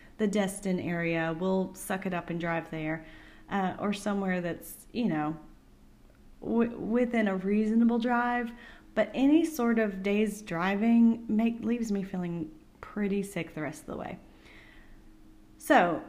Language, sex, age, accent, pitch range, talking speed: English, female, 30-49, American, 175-230 Hz, 140 wpm